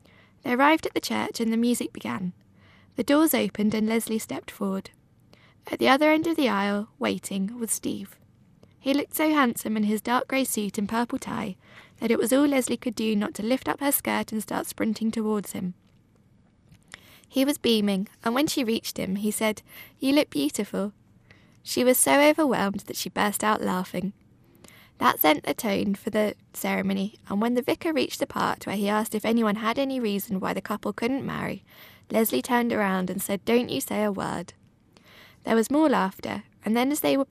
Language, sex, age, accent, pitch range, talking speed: English, female, 20-39, British, 195-260 Hz, 200 wpm